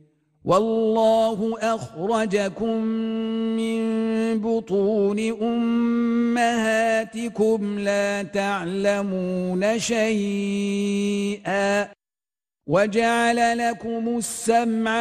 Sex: male